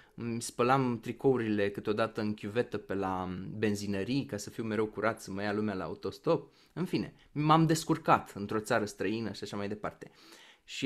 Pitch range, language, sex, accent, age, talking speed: 100-130 Hz, Romanian, male, native, 20-39, 170 wpm